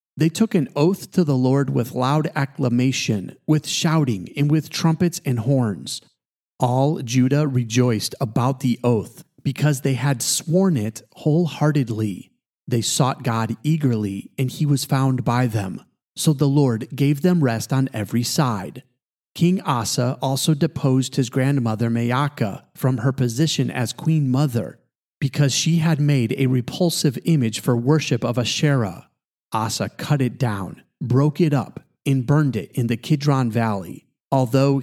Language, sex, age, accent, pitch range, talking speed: English, male, 40-59, American, 120-150 Hz, 150 wpm